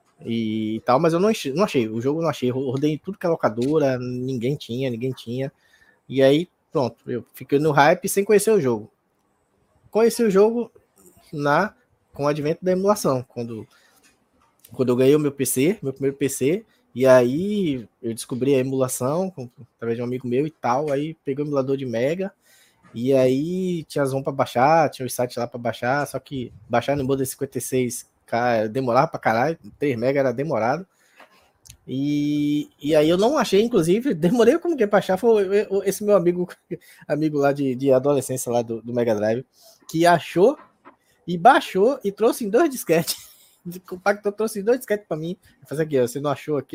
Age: 20-39